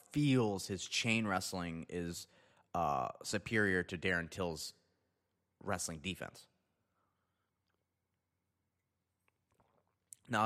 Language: English